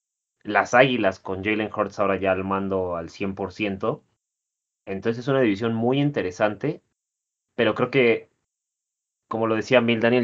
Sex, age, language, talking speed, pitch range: male, 30-49, Spanish, 145 wpm, 95-115 Hz